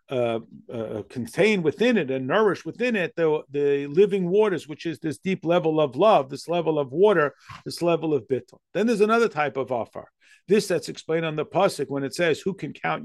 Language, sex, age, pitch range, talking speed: English, male, 50-69, 135-170 Hz, 210 wpm